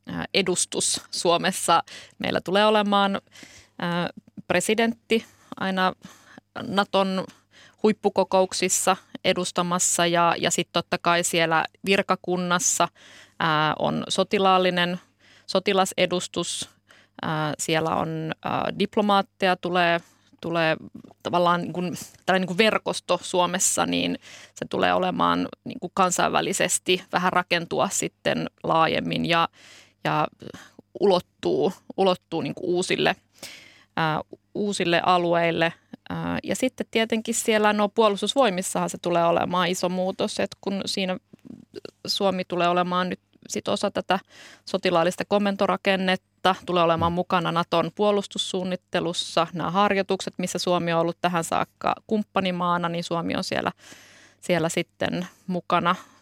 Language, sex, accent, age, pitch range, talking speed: Finnish, female, native, 20-39, 170-195 Hz, 95 wpm